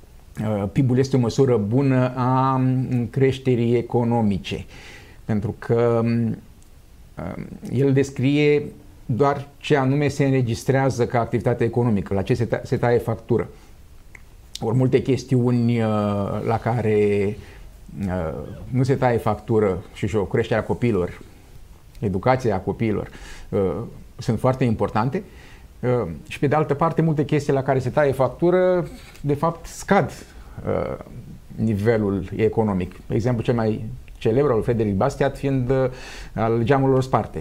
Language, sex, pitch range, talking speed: Romanian, male, 105-135 Hz, 120 wpm